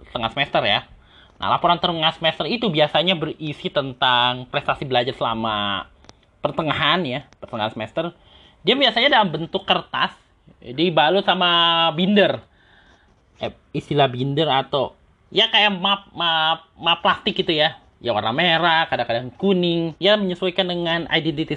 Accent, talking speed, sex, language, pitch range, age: native, 130 wpm, male, Indonesian, 125-165 Hz, 20-39